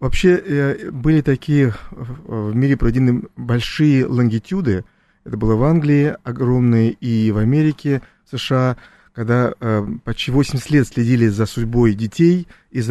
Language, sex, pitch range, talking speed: Russian, male, 115-145 Hz, 120 wpm